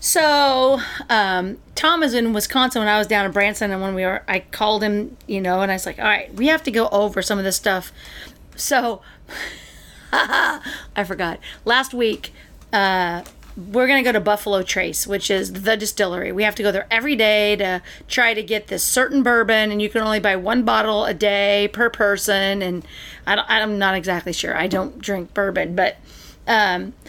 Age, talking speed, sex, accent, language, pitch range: 40-59, 200 wpm, female, American, English, 200-250 Hz